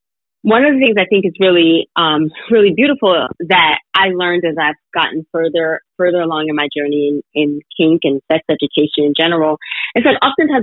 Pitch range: 160-230 Hz